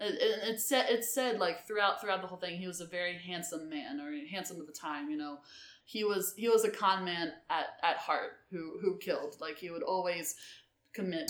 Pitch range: 165-195 Hz